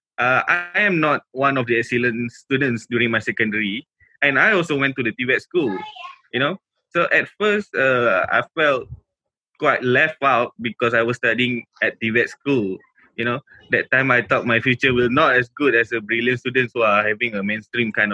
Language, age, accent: English, 20-39, Malaysian